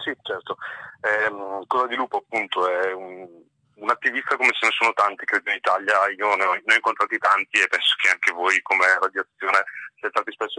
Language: English